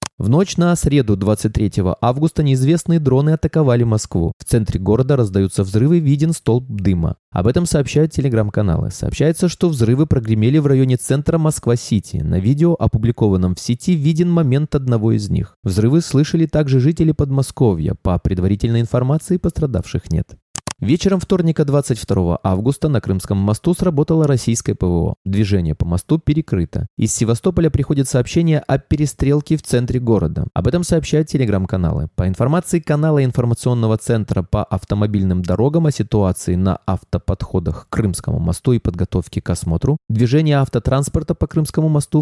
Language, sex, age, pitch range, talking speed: Russian, male, 20-39, 105-150 Hz, 145 wpm